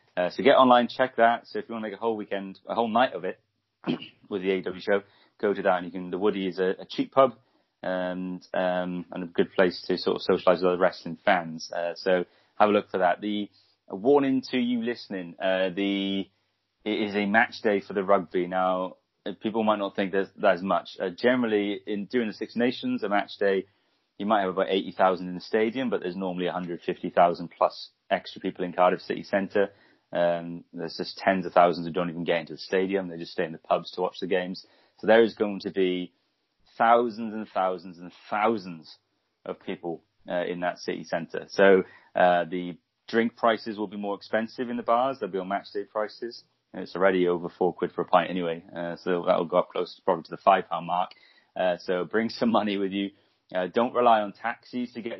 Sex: male